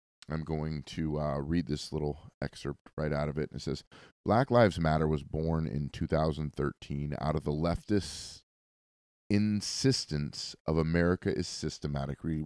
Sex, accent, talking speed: male, American, 145 wpm